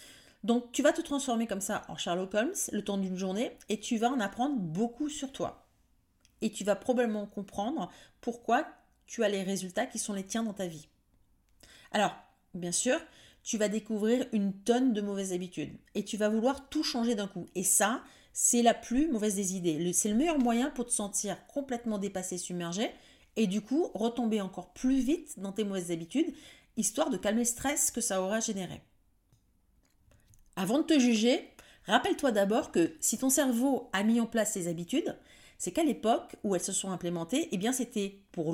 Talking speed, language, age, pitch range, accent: 195 wpm, French, 30-49, 190-250 Hz, French